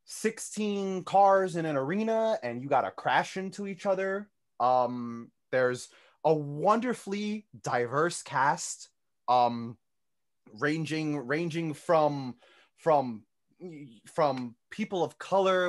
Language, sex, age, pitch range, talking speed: English, male, 20-39, 130-175 Hz, 105 wpm